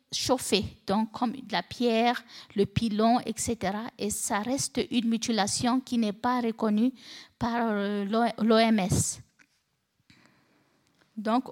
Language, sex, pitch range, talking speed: French, female, 215-250 Hz, 110 wpm